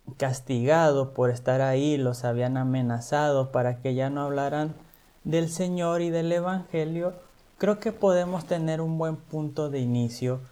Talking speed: 150 wpm